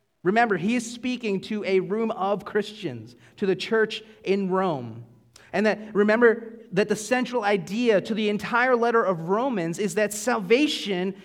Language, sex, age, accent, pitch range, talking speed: English, male, 30-49, American, 170-235 Hz, 160 wpm